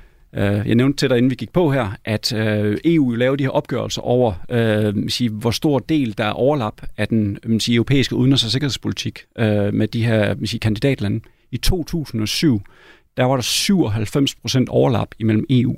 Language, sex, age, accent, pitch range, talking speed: Danish, male, 40-59, native, 110-140 Hz, 185 wpm